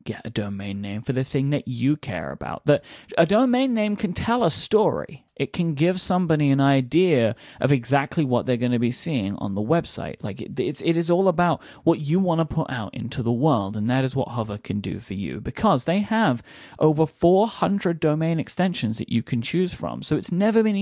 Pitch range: 115-175 Hz